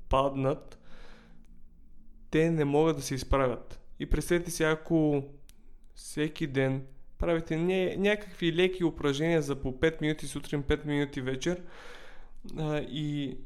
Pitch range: 135-160 Hz